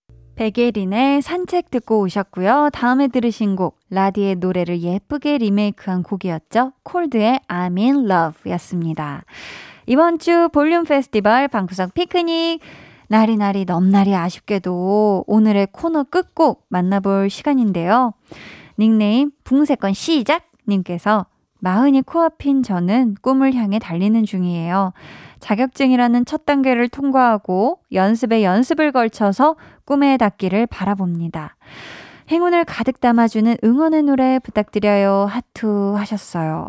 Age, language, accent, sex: 20-39, Korean, native, female